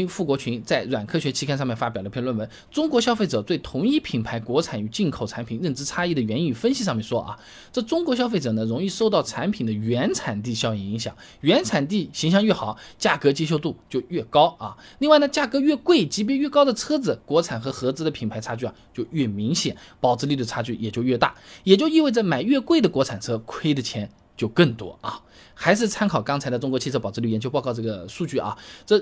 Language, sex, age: Chinese, male, 20-39